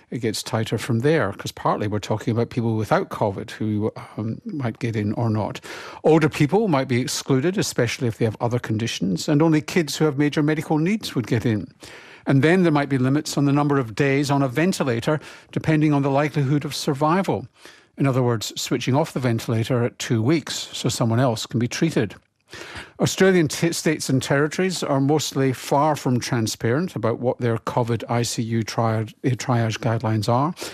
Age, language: 50-69, English